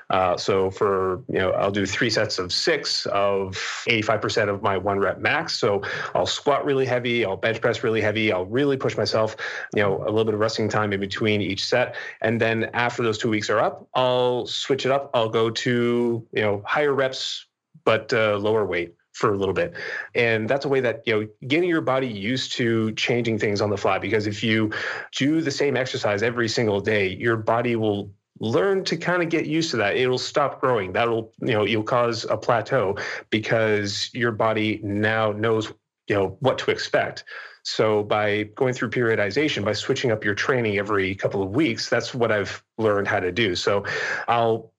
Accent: American